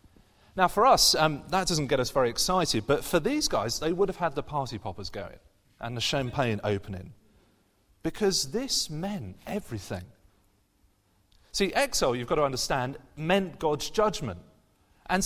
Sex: male